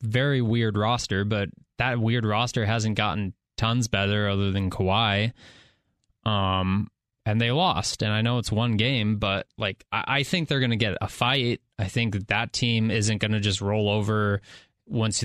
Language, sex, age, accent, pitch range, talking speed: English, male, 20-39, American, 100-115 Hz, 185 wpm